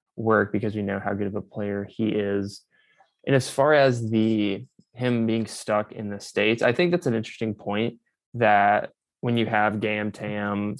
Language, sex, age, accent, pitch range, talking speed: English, male, 20-39, American, 105-115 Hz, 190 wpm